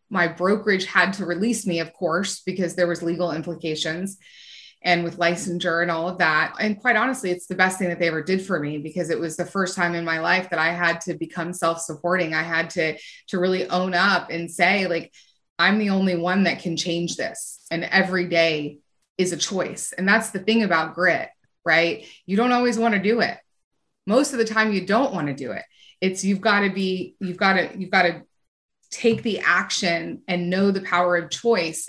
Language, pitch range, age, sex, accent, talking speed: English, 170-195 Hz, 20-39, female, American, 220 wpm